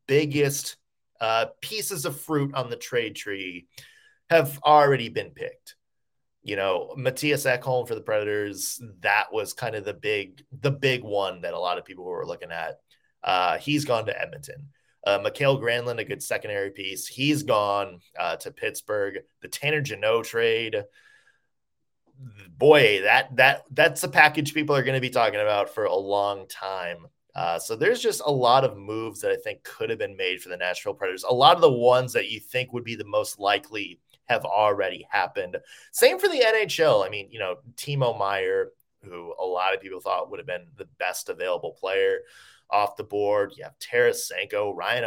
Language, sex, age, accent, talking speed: English, male, 20-39, American, 185 wpm